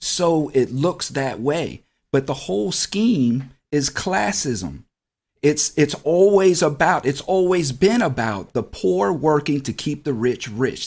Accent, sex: American, male